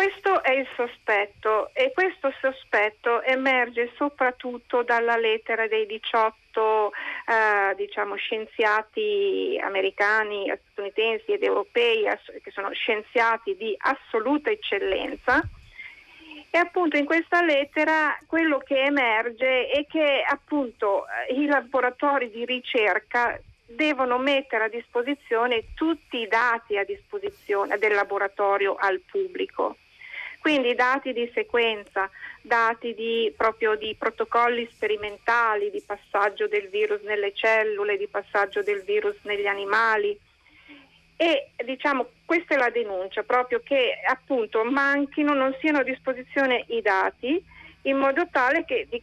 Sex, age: female, 50-69